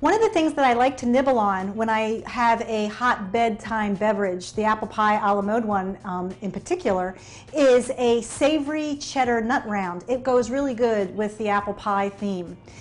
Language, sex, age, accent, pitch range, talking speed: English, female, 40-59, American, 215-280 Hz, 195 wpm